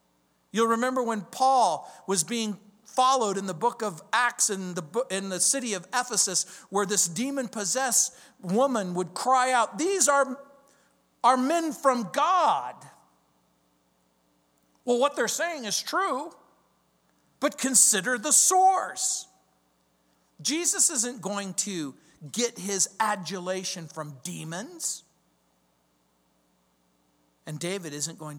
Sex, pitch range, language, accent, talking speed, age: male, 135-210 Hz, English, American, 115 wpm, 50-69